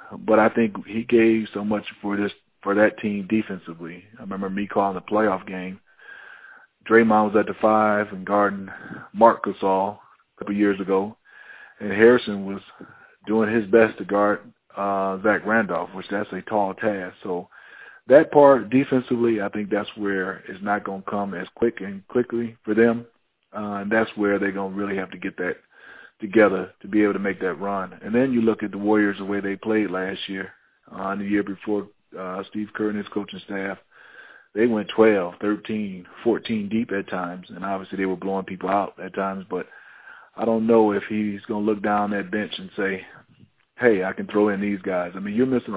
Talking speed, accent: 205 wpm, American